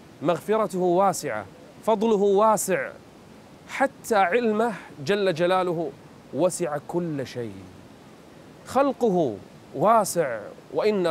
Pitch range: 135-190 Hz